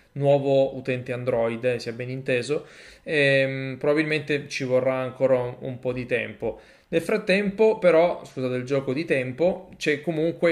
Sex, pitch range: male, 130-150 Hz